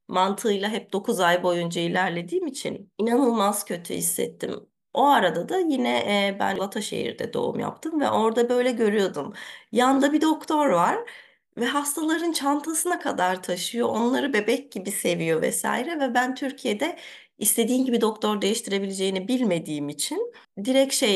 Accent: native